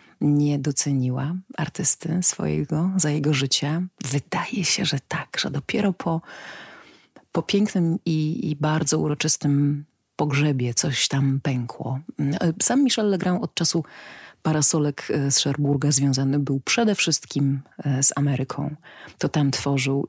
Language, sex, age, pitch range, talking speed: Polish, female, 30-49, 140-170 Hz, 120 wpm